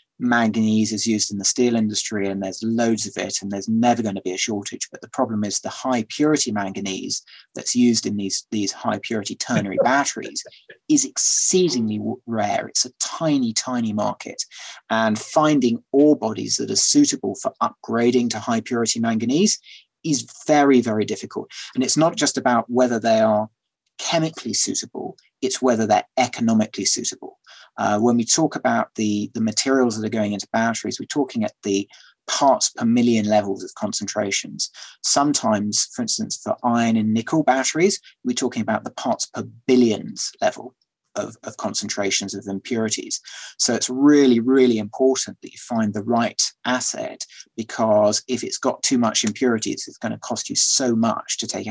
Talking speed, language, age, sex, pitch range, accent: 170 wpm, English, 30-49, male, 105-130 Hz, British